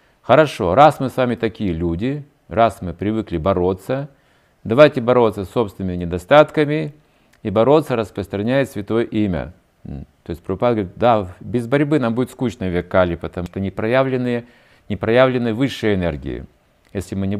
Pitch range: 90-130 Hz